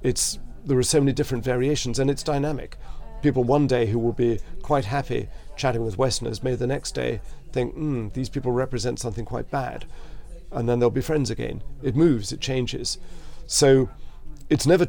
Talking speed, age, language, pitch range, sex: 180 wpm, 40-59, English, 115-135 Hz, male